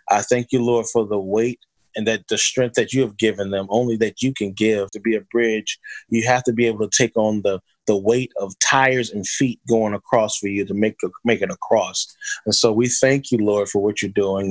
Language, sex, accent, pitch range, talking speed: English, male, American, 110-130 Hz, 245 wpm